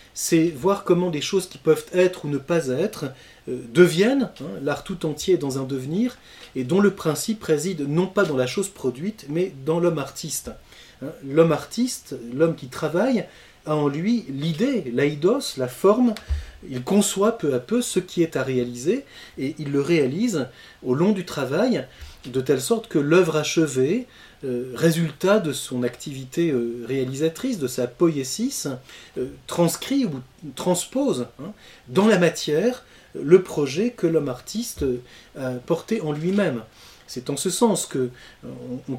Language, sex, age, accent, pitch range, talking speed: French, male, 30-49, French, 130-190 Hz, 155 wpm